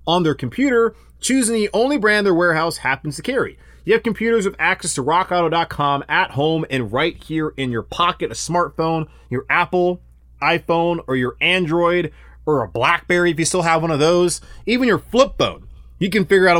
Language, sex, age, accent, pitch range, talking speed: English, male, 30-49, American, 140-185 Hz, 190 wpm